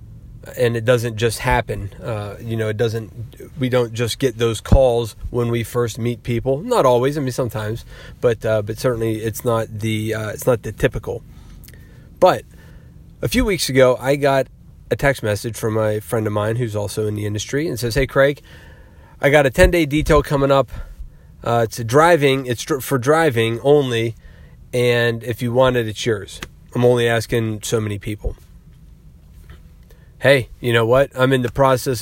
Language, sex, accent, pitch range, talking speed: English, male, American, 110-130 Hz, 185 wpm